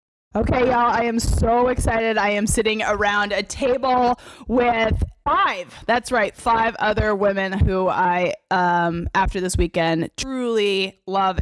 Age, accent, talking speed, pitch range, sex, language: 20-39, American, 140 wpm, 180-215 Hz, female, English